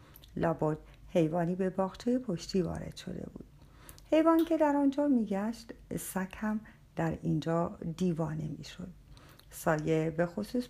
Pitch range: 160-245 Hz